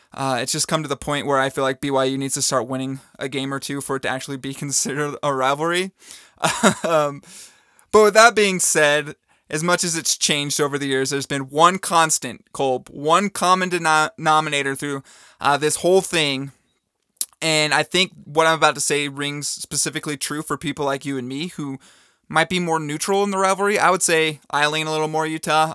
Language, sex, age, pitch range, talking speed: English, male, 20-39, 140-165 Hz, 205 wpm